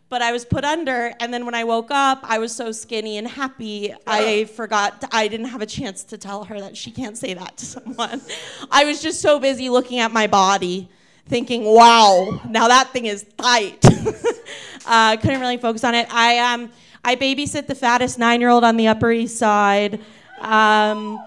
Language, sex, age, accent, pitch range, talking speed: English, female, 30-49, American, 195-235 Hz, 200 wpm